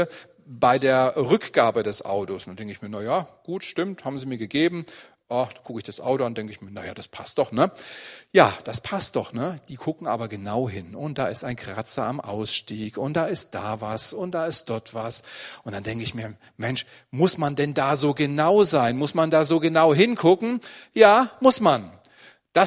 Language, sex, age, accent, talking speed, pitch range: German, male, 40-59, German, 215 wpm, 110-145 Hz